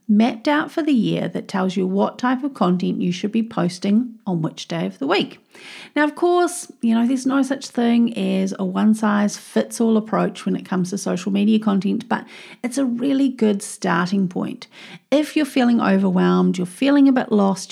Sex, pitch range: female, 195-255 Hz